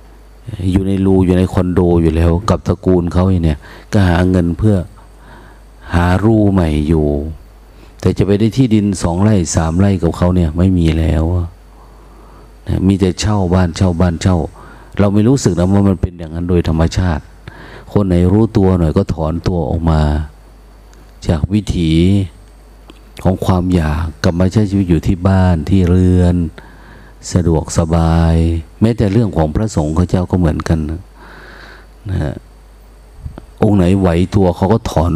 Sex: male